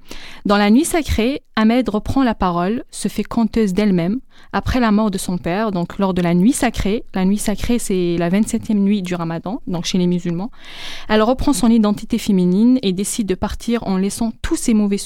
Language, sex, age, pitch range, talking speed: French, female, 20-39, 195-230 Hz, 205 wpm